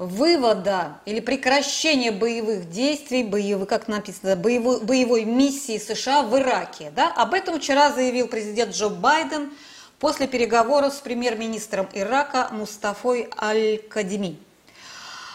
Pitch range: 190-270 Hz